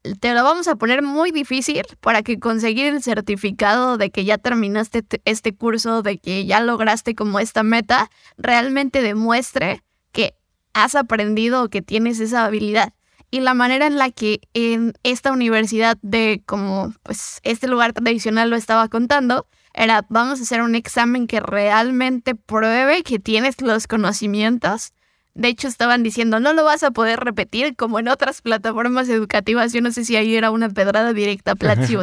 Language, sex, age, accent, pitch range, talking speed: Spanish, female, 10-29, Mexican, 220-250 Hz, 175 wpm